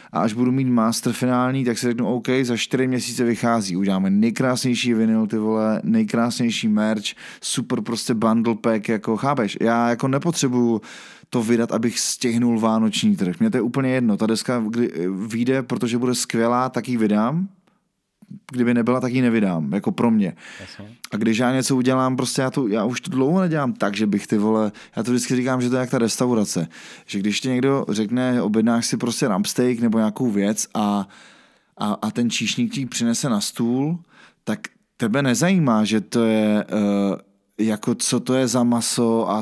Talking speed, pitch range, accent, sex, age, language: 185 wpm, 110-130 Hz, native, male, 20-39, Czech